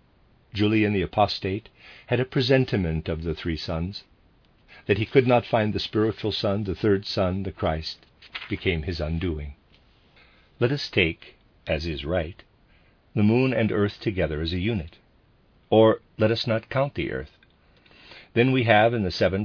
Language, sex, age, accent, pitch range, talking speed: English, male, 50-69, American, 85-110 Hz, 165 wpm